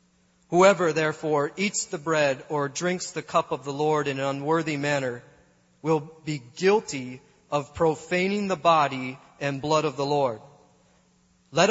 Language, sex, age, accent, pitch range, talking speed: English, male, 30-49, American, 130-180 Hz, 150 wpm